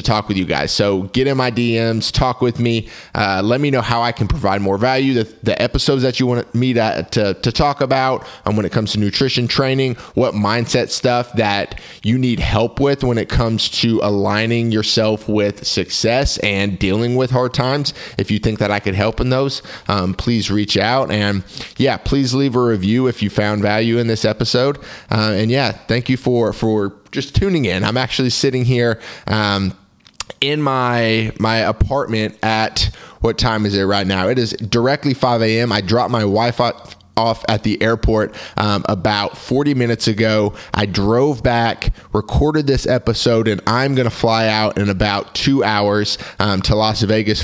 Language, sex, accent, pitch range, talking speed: English, male, American, 105-125 Hz, 195 wpm